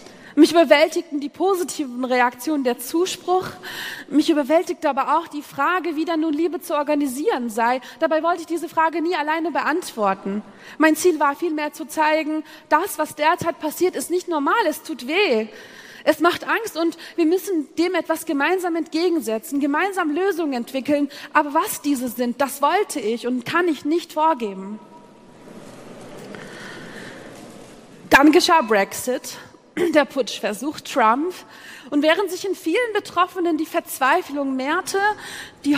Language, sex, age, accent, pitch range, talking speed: German, female, 30-49, German, 280-335 Hz, 145 wpm